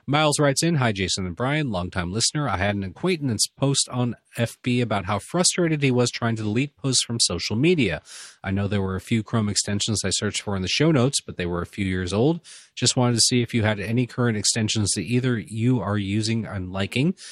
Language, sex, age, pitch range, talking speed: English, male, 30-49, 95-125 Hz, 230 wpm